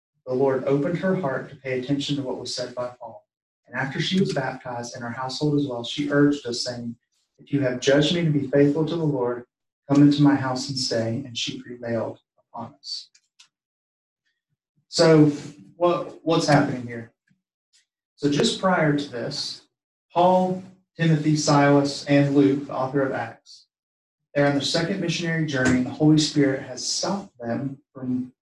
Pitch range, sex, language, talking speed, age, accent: 125-150 Hz, male, English, 175 wpm, 30-49, American